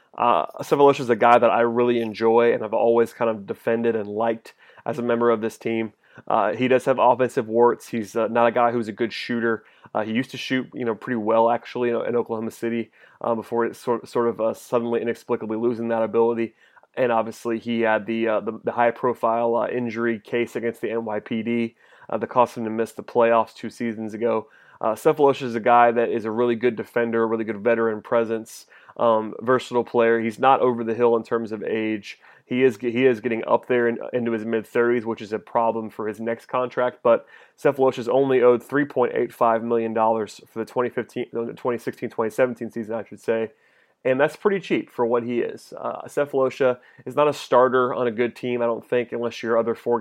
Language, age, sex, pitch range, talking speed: English, 30-49, male, 115-120 Hz, 210 wpm